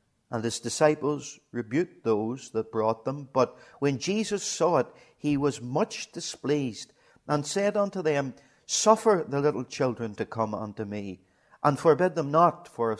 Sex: male